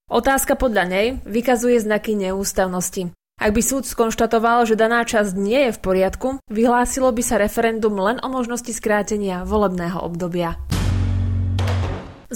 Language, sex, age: Slovak, female, 20-39